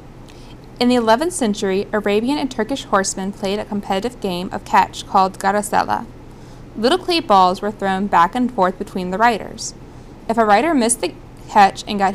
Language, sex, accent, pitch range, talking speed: English, female, American, 190-235 Hz, 175 wpm